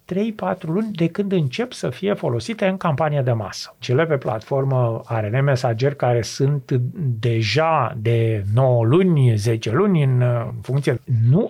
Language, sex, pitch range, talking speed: Romanian, male, 125-170 Hz, 145 wpm